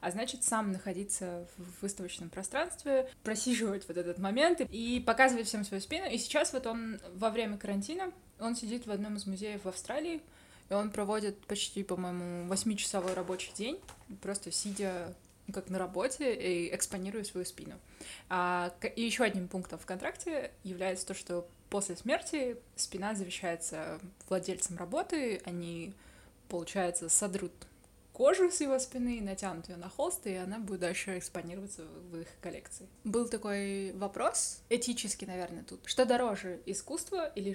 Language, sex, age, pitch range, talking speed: Russian, female, 20-39, 180-225 Hz, 150 wpm